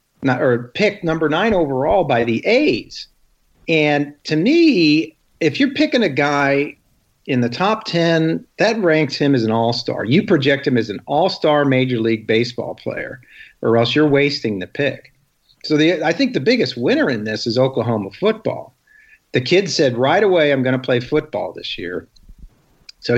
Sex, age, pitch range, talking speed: male, 50-69, 115-155 Hz, 175 wpm